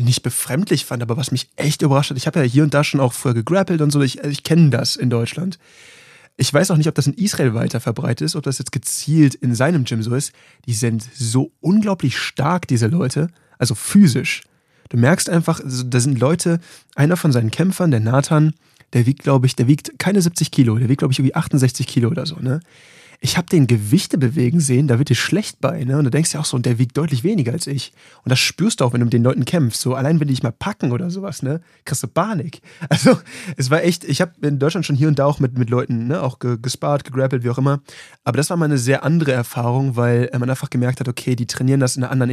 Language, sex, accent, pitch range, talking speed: German, male, German, 125-155 Hz, 255 wpm